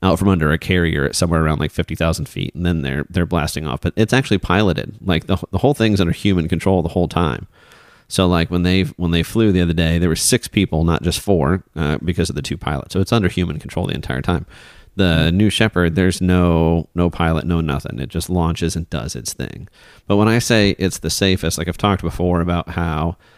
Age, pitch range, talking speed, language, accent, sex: 30-49, 80-95 Hz, 235 wpm, English, American, male